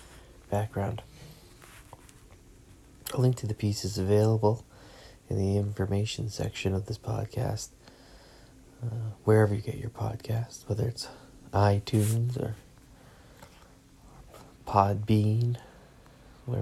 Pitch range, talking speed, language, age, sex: 100-130 Hz, 100 wpm, English, 30-49, male